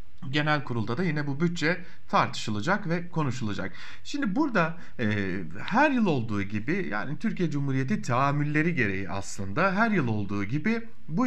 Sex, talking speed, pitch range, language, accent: male, 145 wpm, 110-180 Hz, German, Turkish